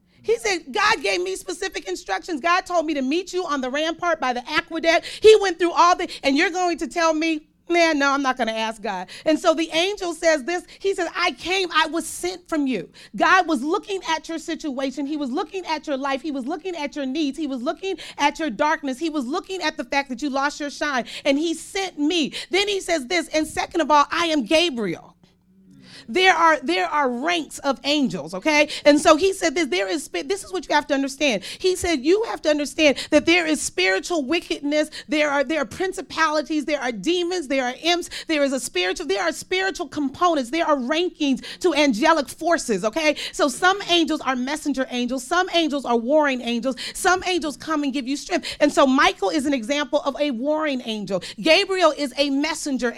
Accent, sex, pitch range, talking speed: American, female, 280-345 Hz, 220 wpm